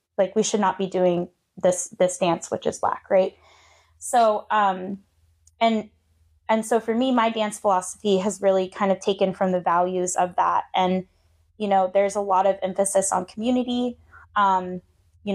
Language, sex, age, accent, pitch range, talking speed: English, female, 10-29, American, 180-215 Hz, 175 wpm